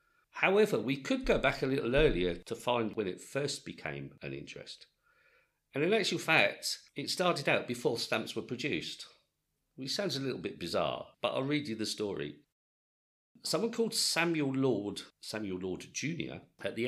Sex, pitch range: male, 95-140 Hz